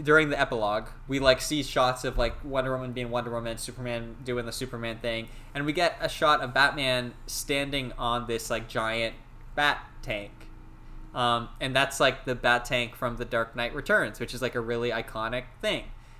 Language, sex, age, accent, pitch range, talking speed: English, male, 10-29, American, 120-145 Hz, 195 wpm